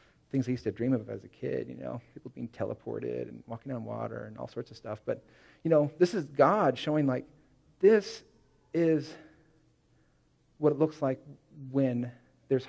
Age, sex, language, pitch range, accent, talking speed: 40-59, male, English, 120-145 Hz, American, 185 wpm